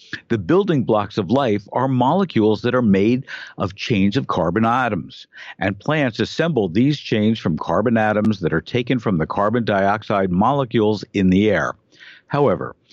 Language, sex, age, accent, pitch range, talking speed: English, male, 50-69, American, 105-135 Hz, 160 wpm